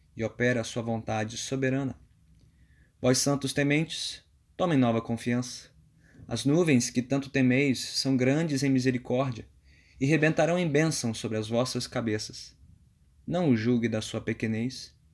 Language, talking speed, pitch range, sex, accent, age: Portuguese, 140 wpm, 110-135 Hz, male, Brazilian, 20-39